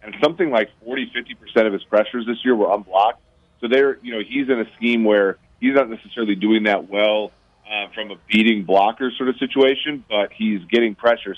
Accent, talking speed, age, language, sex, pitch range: American, 210 wpm, 30-49, English, male, 100-115 Hz